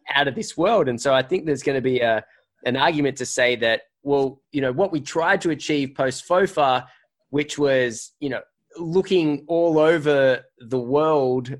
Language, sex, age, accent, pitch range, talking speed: English, male, 20-39, Australian, 125-165 Hz, 190 wpm